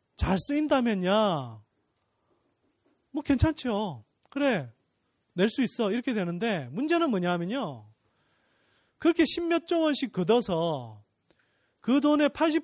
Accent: native